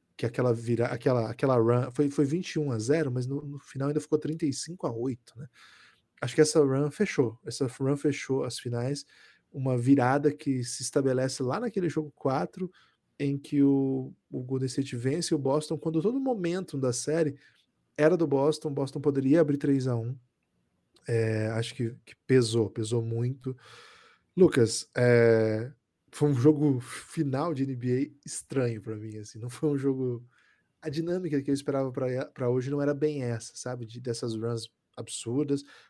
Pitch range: 120-150 Hz